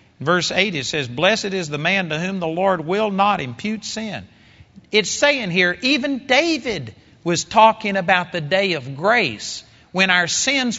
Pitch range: 145-195 Hz